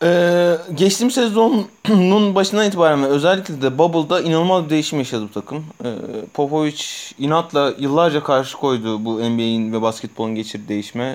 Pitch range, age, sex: 120-165 Hz, 30-49, male